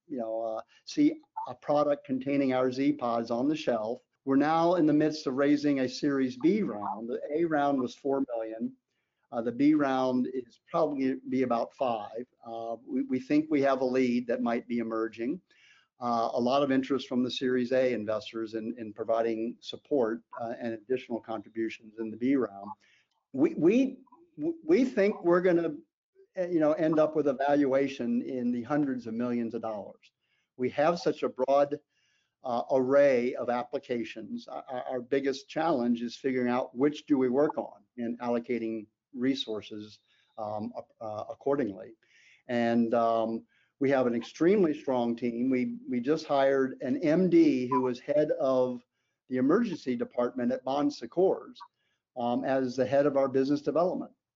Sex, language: male, English